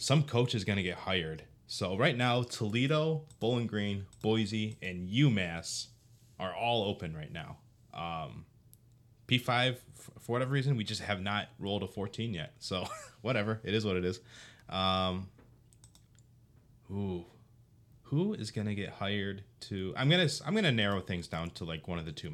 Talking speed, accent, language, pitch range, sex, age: 165 wpm, American, English, 95-120 Hz, male, 20-39